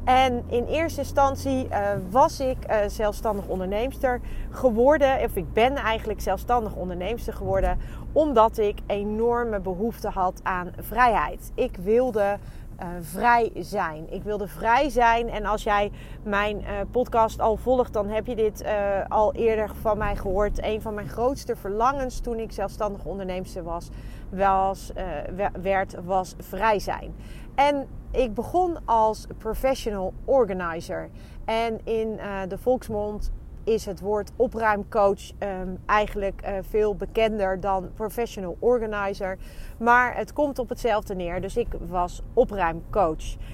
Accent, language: Dutch, Dutch